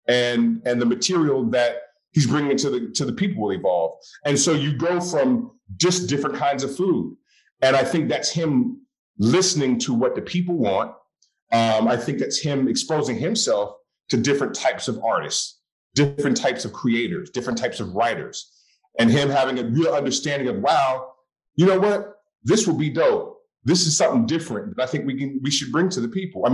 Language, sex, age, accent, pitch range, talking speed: English, male, 40-59, American, 130-180 Hz, 195 wpm